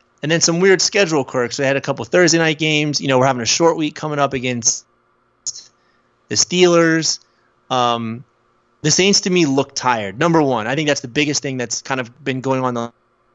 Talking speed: 215 wpm